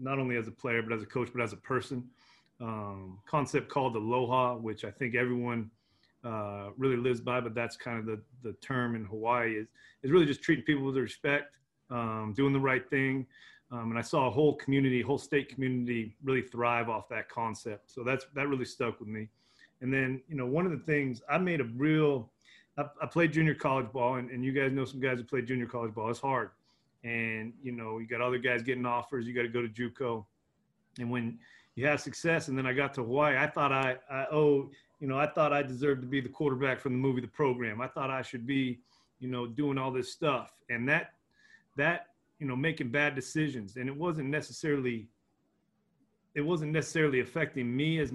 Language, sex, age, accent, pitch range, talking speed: English, male, 30-49, American, 120-140 Hz, 220 wpm